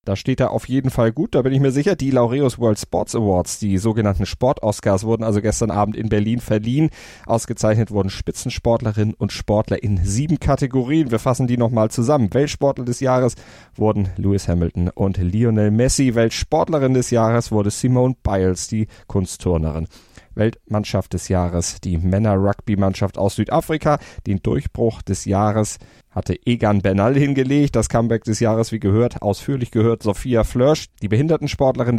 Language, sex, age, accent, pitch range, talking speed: German, male, 30-49, German, 100-120 Hz, 160 wpm